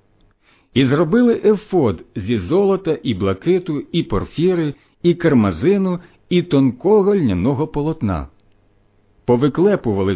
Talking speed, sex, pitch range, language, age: 95 wpm, male, 100-170 Hz, Ukrainian, 50-69